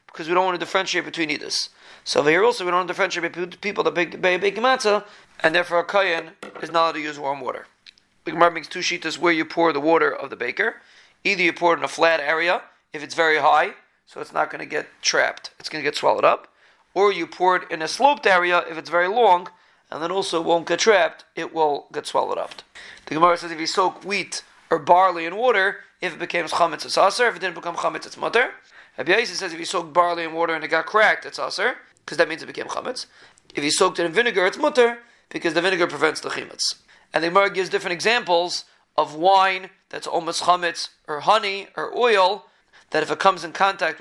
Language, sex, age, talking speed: English, male, 40-59, 230 wpm